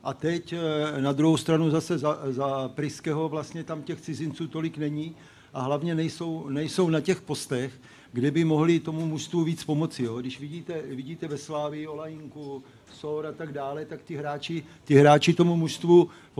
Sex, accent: male, native